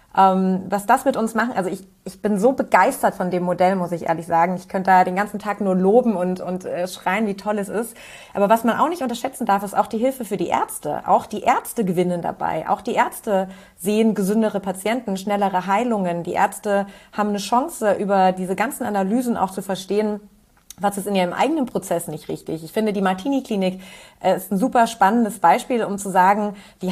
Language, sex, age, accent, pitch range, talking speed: German, female, 30-49, German, 190-240 Hz, 210 wpm